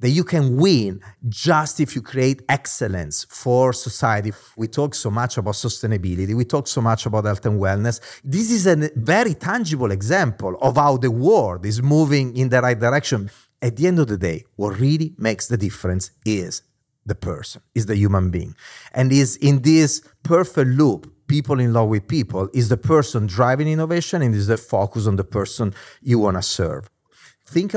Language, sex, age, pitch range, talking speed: English, male, 40-59, 110-145 Hz, 190 wpm